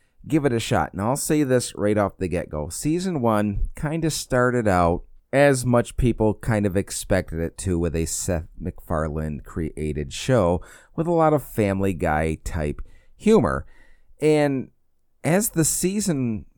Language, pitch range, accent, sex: English, 80-115 Hz, American, male